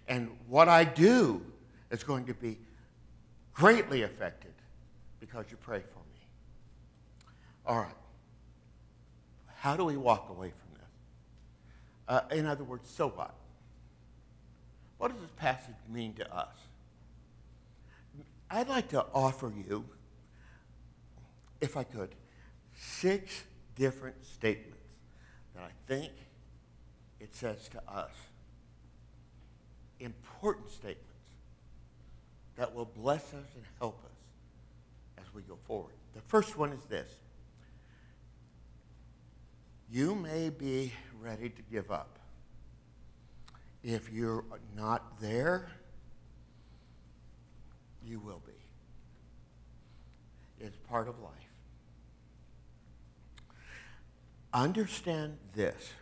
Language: English